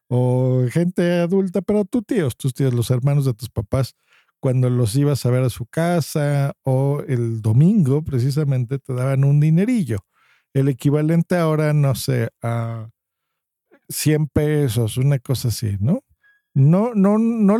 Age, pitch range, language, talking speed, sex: 50-69, 120-150 Hz, Spanish, 150 wpm, male